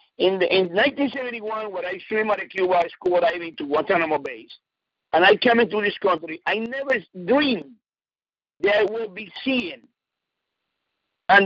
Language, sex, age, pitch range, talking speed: English, male, 50-69, 180-265 Hz, 160 wpm